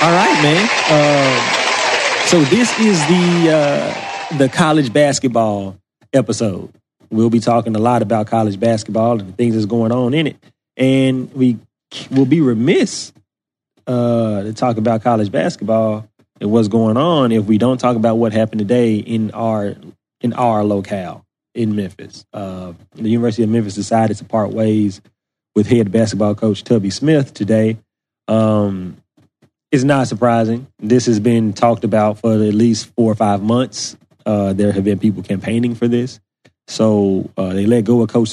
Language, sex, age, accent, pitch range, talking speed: English, male, 30-49, American, 105-120 Hz, 165 wpm